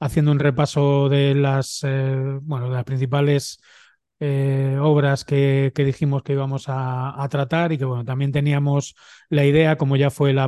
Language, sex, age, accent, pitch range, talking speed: Spanish, male, 20-39, Spanish, 130-145 Hz, 180 wpm